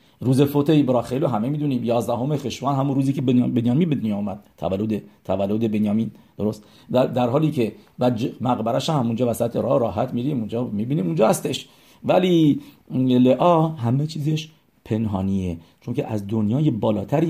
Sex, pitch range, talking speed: male, 120-145 Hz, 160 wpm